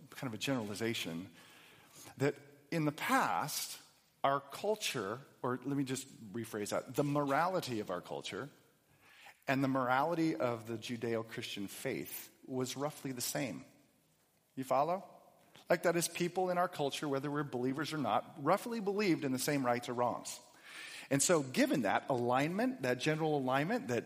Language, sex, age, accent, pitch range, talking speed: English, male, 40-59, American, 125-165 Hz, 155 wpm